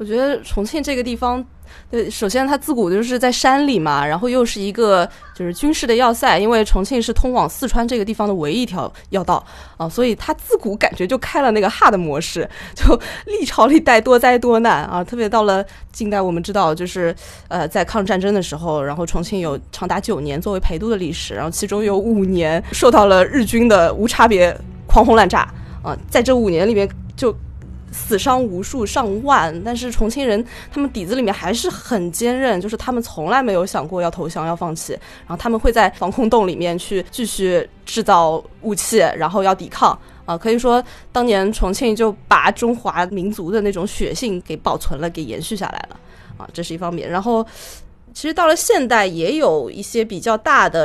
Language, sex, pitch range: Chinese, female, 185-245 Hz